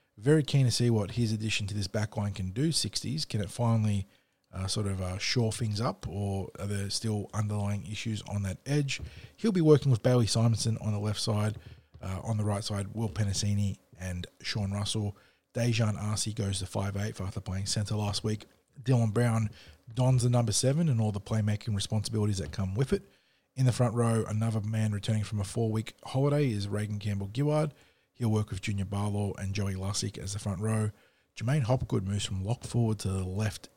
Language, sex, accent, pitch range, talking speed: English, male, Australian, 100-120 Hz, 200 wpm